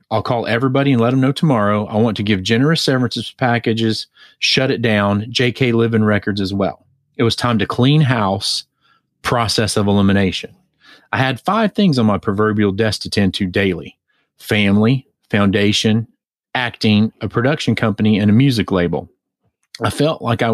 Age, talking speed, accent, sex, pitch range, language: 30-49, 170 wpm, American, male, 100-120 Hz, English